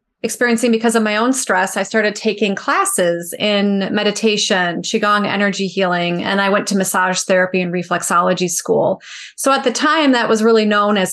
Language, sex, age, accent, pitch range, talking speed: English, female, 30-49, American, 200-230 Hz, 180 wpm